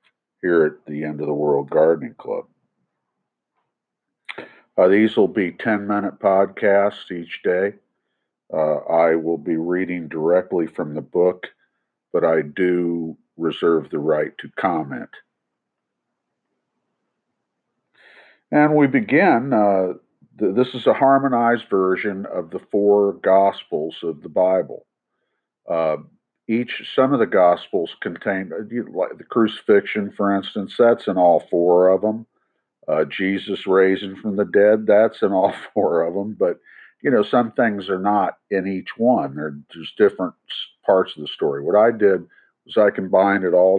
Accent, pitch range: American, 85-105 Hz